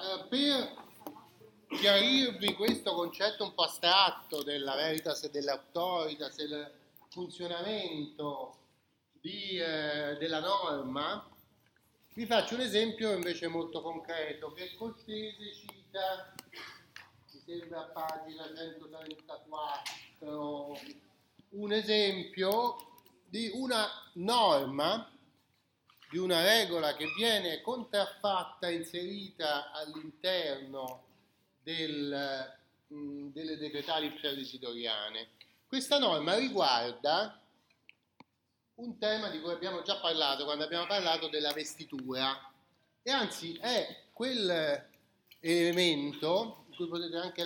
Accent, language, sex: native, Italian, male